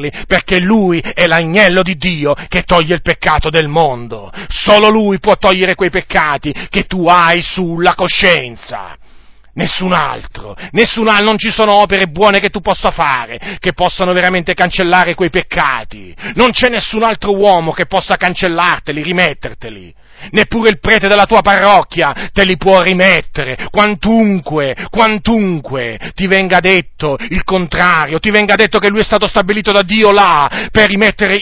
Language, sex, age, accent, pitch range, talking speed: Italian, male, 40-59, native, 170-205 Hz, 155 wpm